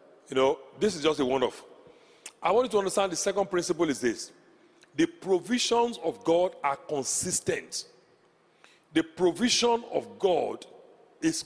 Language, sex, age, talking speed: English, male, 40-59, 145 wpm